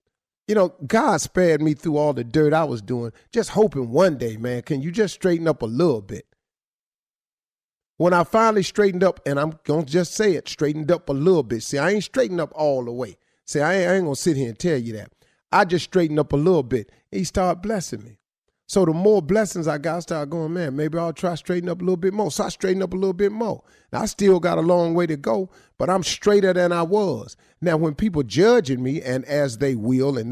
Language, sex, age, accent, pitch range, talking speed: English, male, 30-49, American, 130-180 Hz, 250 wpm